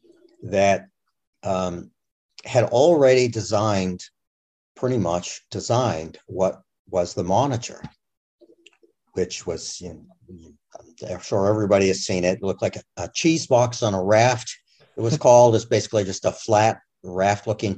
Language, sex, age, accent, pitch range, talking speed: English, male, 60-79, American, 95-120 Hz, 140 wpm